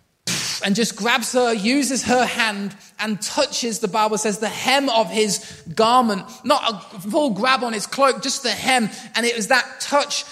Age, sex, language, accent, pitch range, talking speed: 20-39, male, English, British, 215-255 Hz, 185 wpm